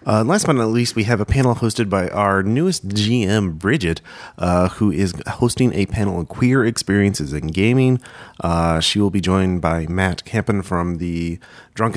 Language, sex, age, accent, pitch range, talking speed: English, male, 30-49, American, 90-115 Hz, 185 wpm